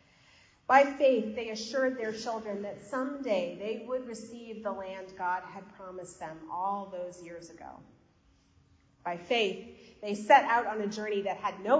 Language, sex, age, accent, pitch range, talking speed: English, female, 30-49, American, 190-260 Hz, 165 wpm